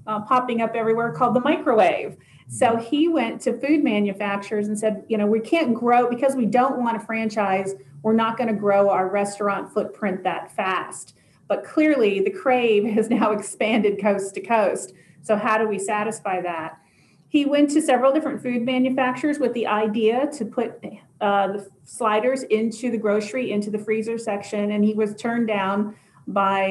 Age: 40-59